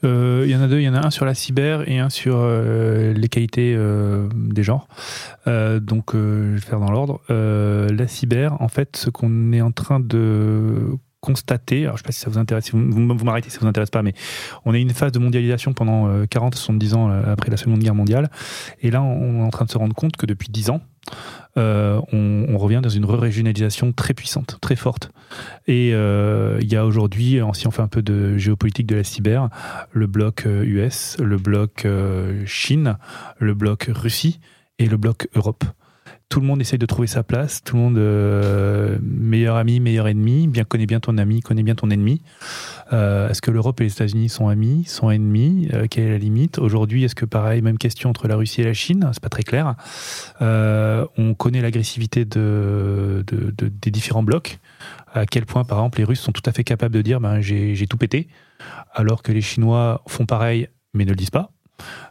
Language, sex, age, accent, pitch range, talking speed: French, male, 30-49, French, 110-125 Hz, 215 wpm